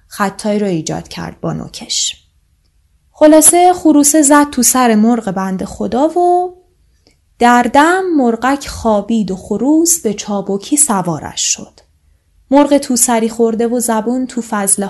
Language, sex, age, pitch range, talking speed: Persian, female, 10-29, 190-275 Hz, 135 wpm